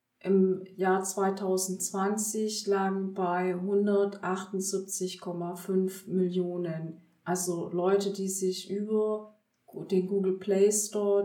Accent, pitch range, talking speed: German, 185-215 Hz, 85 wpm